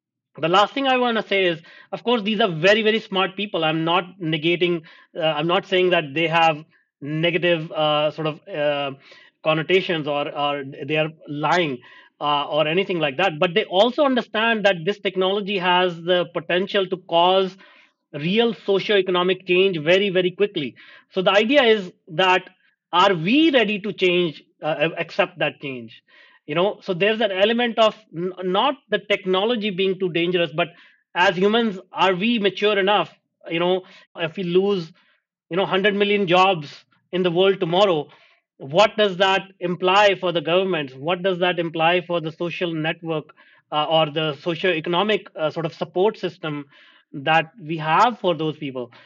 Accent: Indian